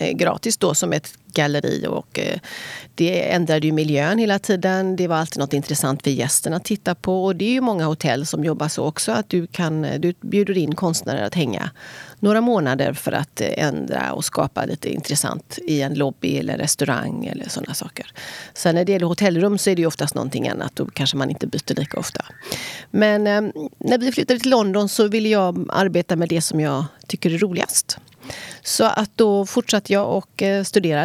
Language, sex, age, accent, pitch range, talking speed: Swedish, female, 30-49, native, 160-205 Hz, 195 wpm